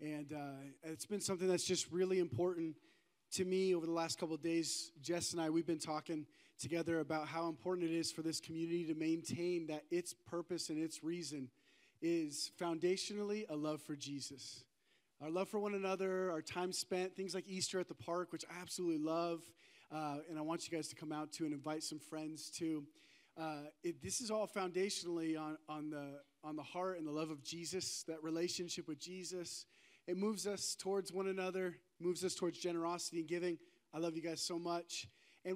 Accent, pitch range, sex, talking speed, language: American, 160-190 Hz, male, 200 wpm, English